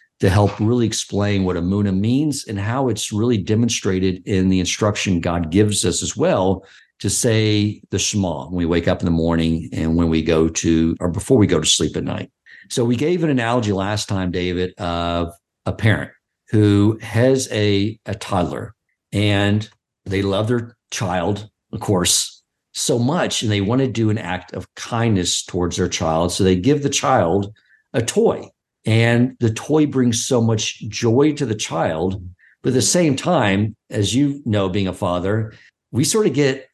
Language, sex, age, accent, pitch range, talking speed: English, male, 50-69, American, 95-120 Hz, 185 wpm